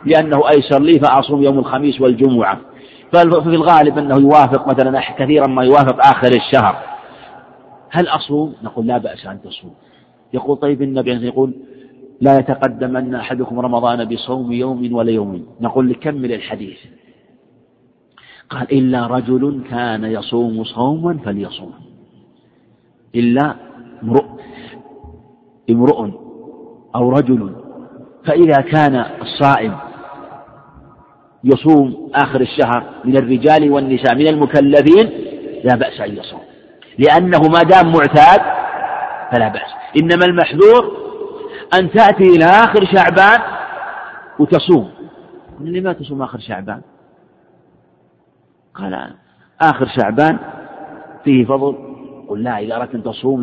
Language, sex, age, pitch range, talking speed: Arabic, male, 50-69, 125-155 Hz, 105 wpm